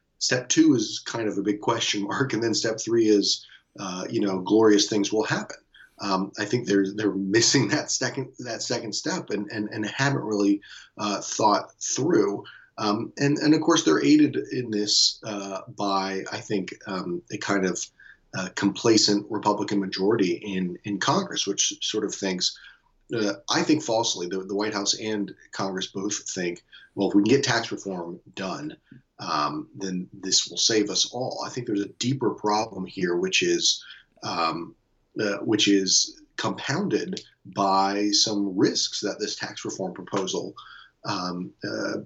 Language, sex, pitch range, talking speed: English, male, 95-110 Hz, 170 wpm